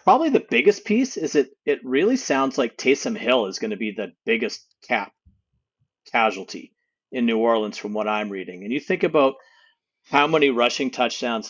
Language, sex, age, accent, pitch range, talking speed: English, male, 40-59, American, 105-140 Hz, 185 wpm